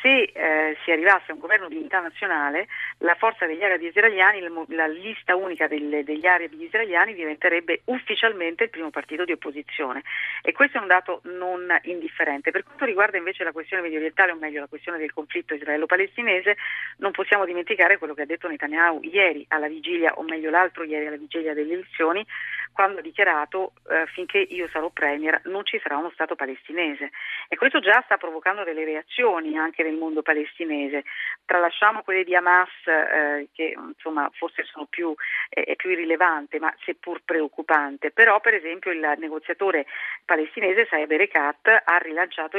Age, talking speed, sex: 40-59, 170 wpm, female